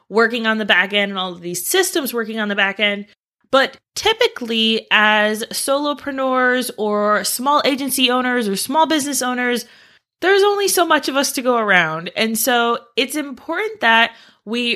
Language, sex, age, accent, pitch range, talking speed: English, female, 20-39, American, 195-255 Hz, 170 wpm